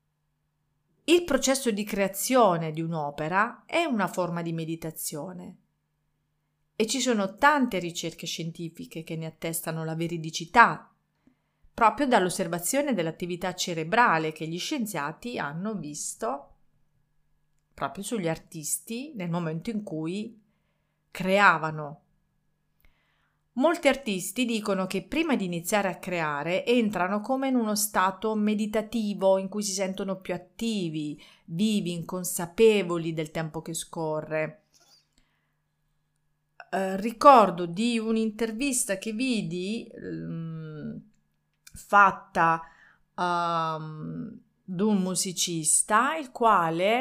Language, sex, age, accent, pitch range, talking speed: Italian, female, 40-59, native, 160-220 Hz, 100 wpm